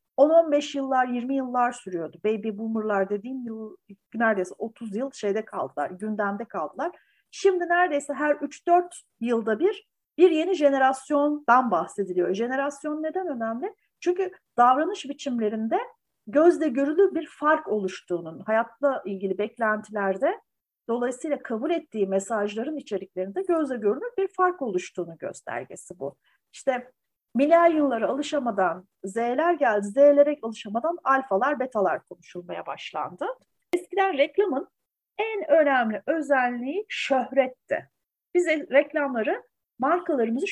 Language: Turkish